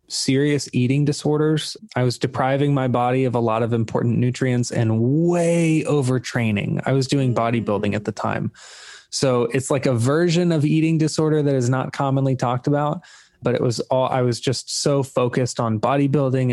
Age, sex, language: 20-39, male, English